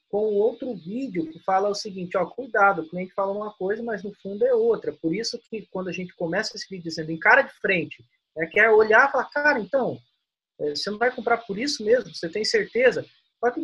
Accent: Brazilian